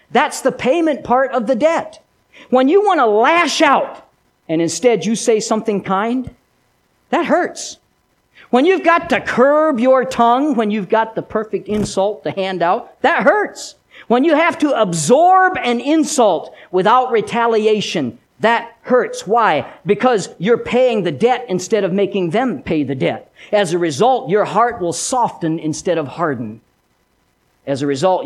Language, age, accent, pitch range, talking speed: English, 50-69, American, 170-270 Hz, 160 wpm